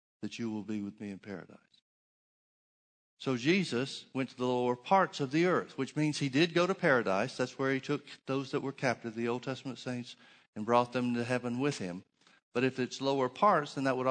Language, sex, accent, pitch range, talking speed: English, male, American, 120-140 Hz, 220 wpm